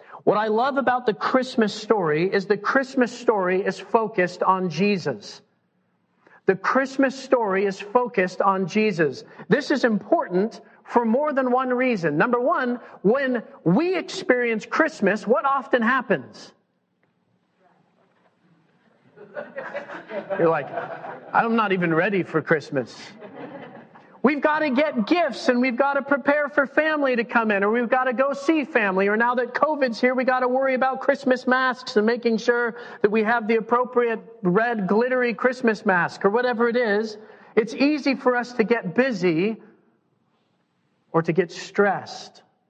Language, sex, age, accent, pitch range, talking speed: English, male, 40-59, American, 185-255 Hz, 150 wpm